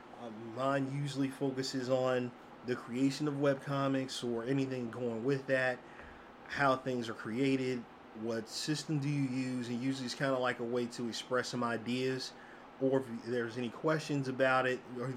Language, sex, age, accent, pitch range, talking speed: English, male, 30-49, American, 120-135 Hz, 175 wpm